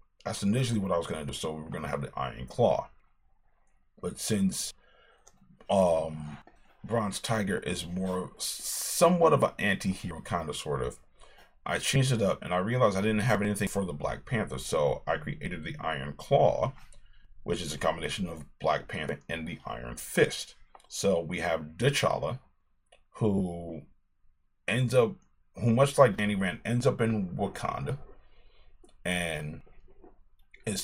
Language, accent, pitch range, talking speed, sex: English, American, 80-110 Hz, 160 wpm, male